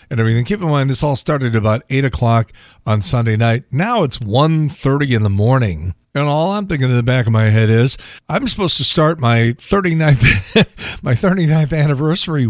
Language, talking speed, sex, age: English, 190 wpm, male, 50-69